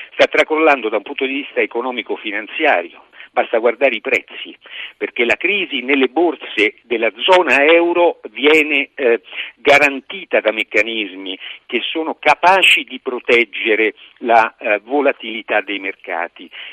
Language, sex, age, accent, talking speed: Italian, male, 50-69, native, 125 wpm